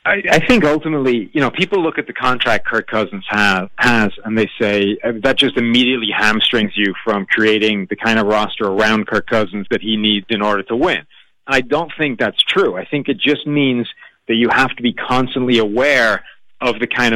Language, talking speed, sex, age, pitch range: English, 205 wpm, male, 40-59, 110-130 Hz